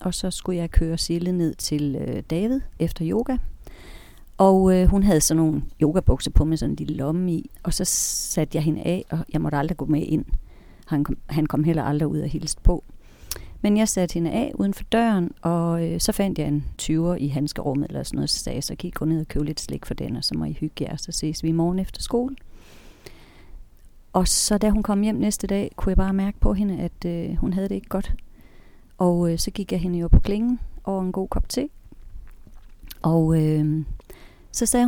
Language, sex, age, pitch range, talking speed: Danish, female, 40-59, 160-210 Hz, 230 wpm